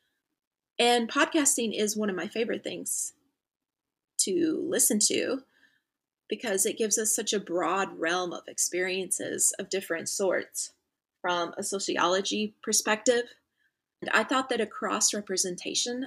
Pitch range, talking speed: 190-230 Hz, 125 wpm